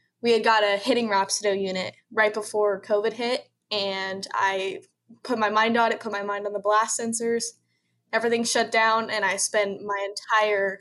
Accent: American